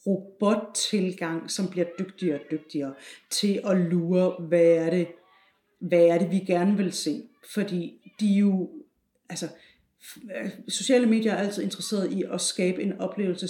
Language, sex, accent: Danish, female, native